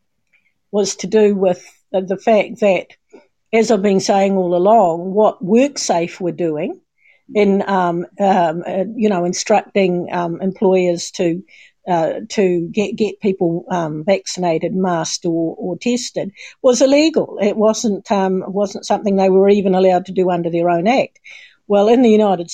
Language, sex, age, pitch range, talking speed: English, female, 60-79, 180-215 Hz, 155 wpm